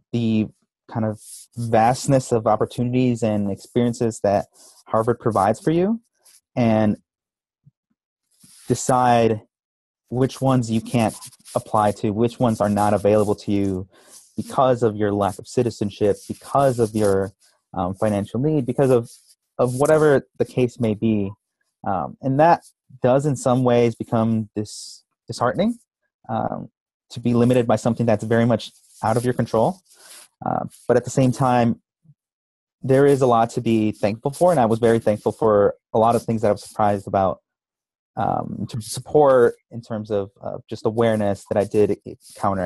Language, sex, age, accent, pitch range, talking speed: English, male, 30-49, American, 110-130 Hz, 160 wpm